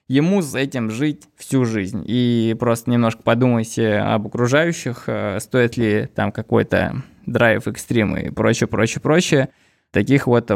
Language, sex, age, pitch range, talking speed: Russian, male, 20-39, 110-135 Hz, 125 wpm